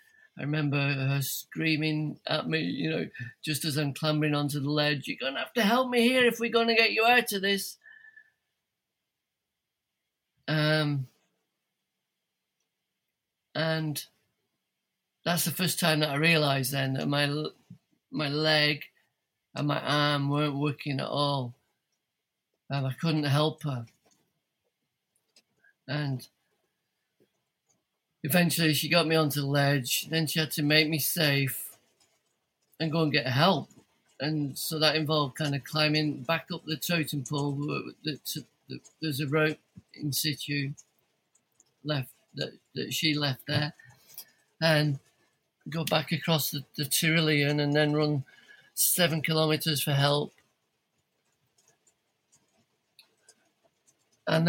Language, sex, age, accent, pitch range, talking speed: English, male, 50-69, British, 145-160 Hz, 130 wpm